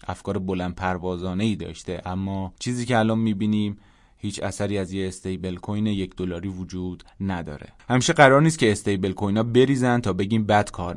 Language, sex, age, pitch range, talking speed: Persian, male, 20-39, 95-120 Hz, 165 wpm